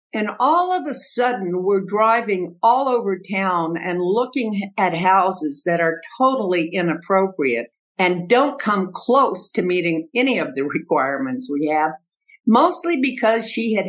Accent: American